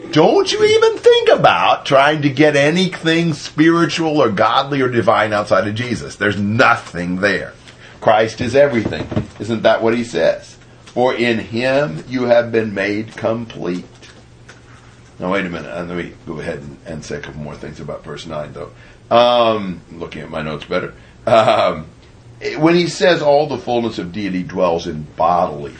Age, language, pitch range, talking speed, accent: 50-69, English, 95-145 Hz, 170 wpm, American